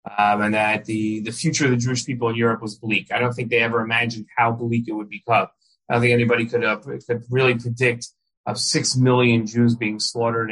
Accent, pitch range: American, 110-125 Hz